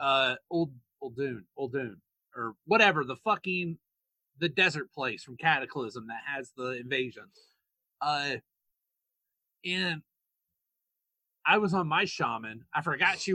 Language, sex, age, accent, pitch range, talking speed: English, male, 30-49, American, 150-225 Hz, 130 wpm